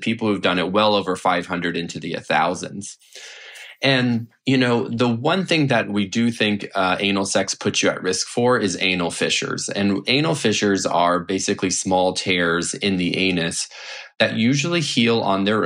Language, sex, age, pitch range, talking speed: English, male, 20-39, 90-115 Hz, 175 wpm